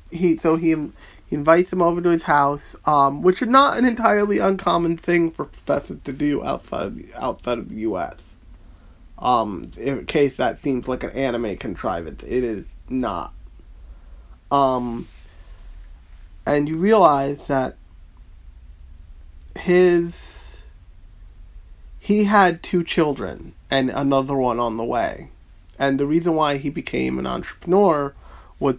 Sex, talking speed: male, 130 wpm